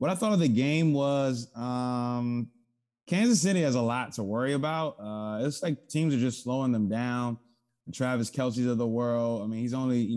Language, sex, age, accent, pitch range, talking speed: English, male, 20-39, American, 110-130 Hz, 210 wpm